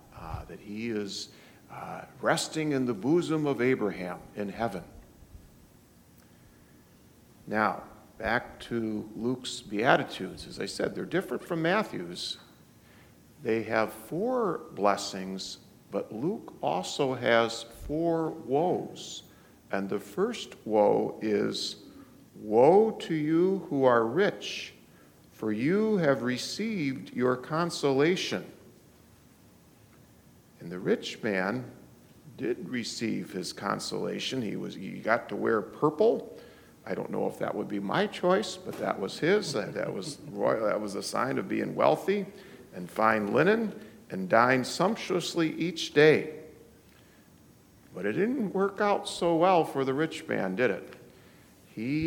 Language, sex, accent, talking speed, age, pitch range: English, male, American, 130 wpm, 50-69, 100-170 Hz